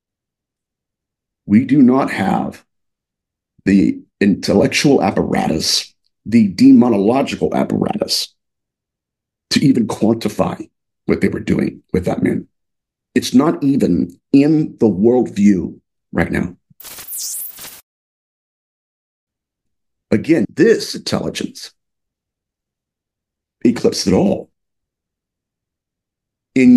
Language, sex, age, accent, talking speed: English, male, 50-69, American, 80 wpm